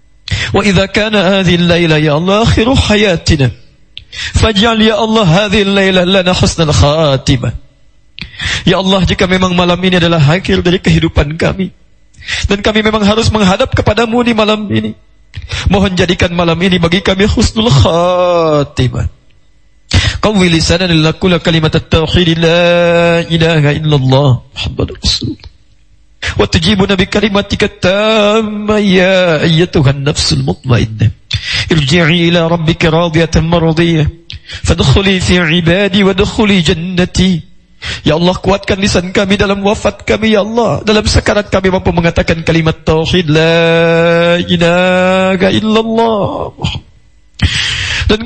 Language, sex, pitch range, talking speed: Indonesian, male, 160-205 Hz, 75 wpm